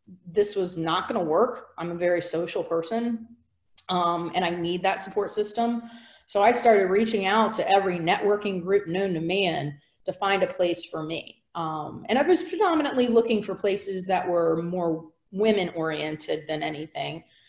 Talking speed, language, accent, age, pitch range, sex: 170 wpm, English, American, 30-49, 170-225 Hz, female